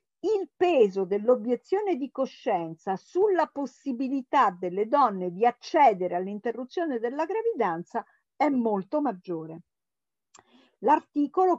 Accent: native